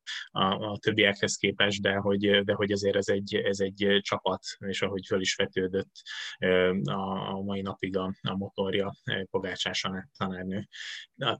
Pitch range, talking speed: 95-105 Hz, 155 wpm